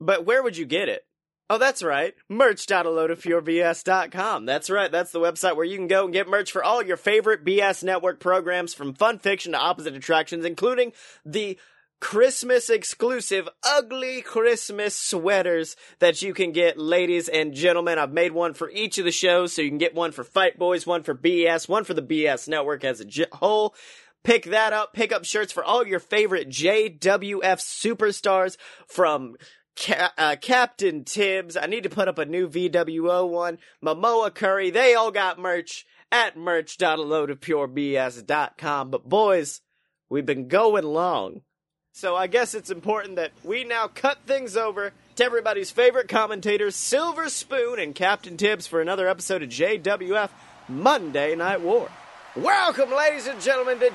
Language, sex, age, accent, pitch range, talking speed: English, male, 30-49, American, 170-240 Hz, 165 wpm